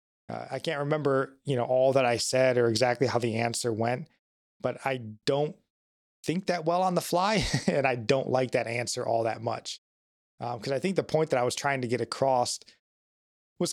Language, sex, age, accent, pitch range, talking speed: English, male, 20-39, American, 115-140 Hz, 210 wpm